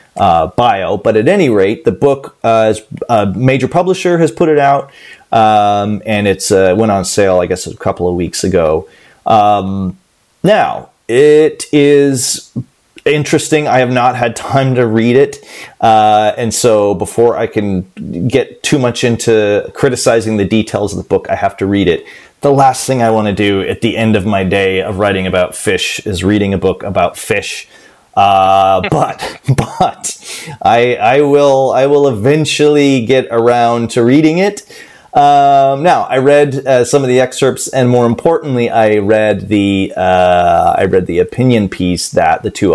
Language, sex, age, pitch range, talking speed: English, male, 30-49, 100-135 Hz, 175 wpm